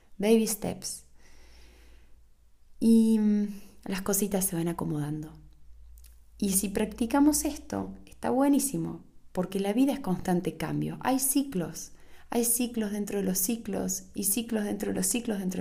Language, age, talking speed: Spanish, 20-39, 135 wpm